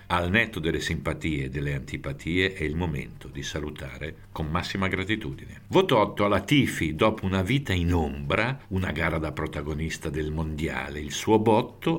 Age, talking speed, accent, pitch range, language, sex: 60-79, 165 wpm, native, 80-110 Hz, Italian, male